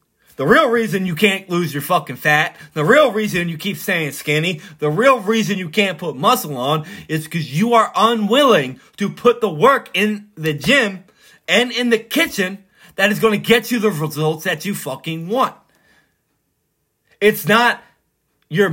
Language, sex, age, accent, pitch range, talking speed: English, male, 30-49, American, 155-215 Hz, 175 wpm